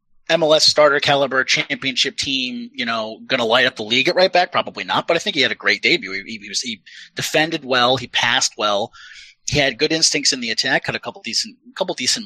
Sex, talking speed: male, 230 wpm